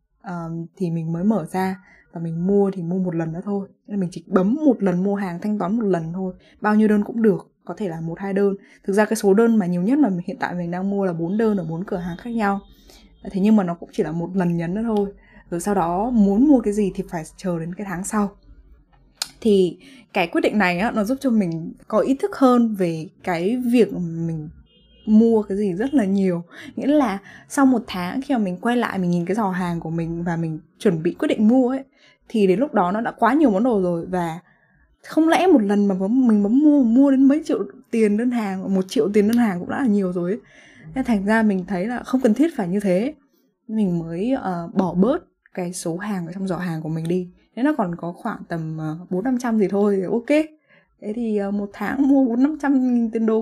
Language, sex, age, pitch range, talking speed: Vietnamese, female, 10-29, 180-235 Hz, 255 wpm